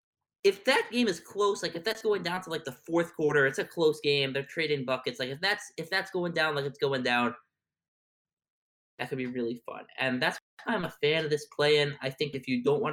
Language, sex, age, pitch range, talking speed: English, male, 20-39, 125-175 Hz, 245 wpm